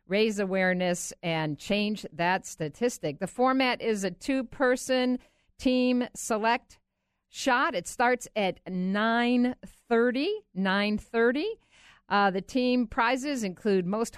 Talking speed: 110 wpm